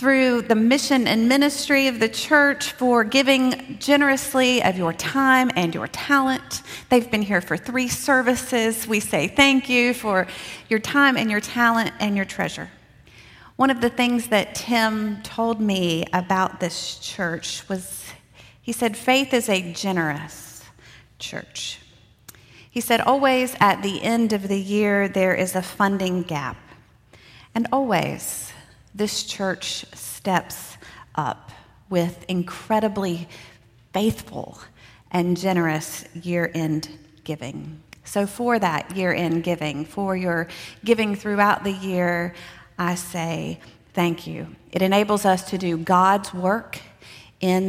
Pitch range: 165-225 Hz